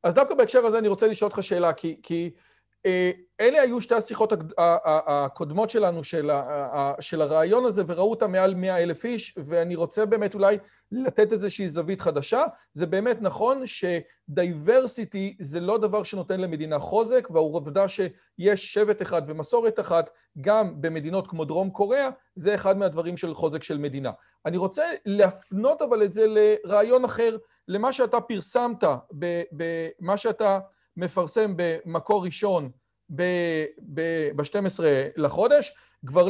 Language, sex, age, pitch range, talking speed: Hebrew, male, 40-59, 170-225 Hz, 135 wpm